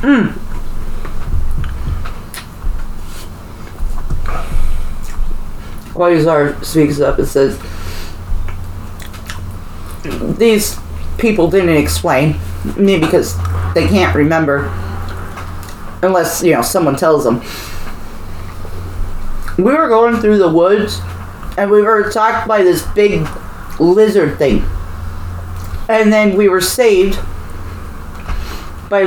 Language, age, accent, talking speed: English, 40-59, American, 85 wpm